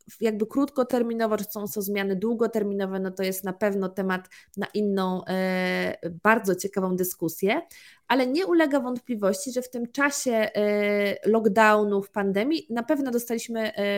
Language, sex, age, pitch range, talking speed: Polish, female, 20-39, 195-240 Hz, 150 wpm